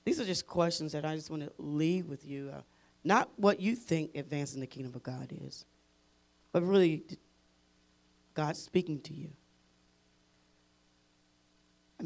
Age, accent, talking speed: 40-59, American, 150 wpm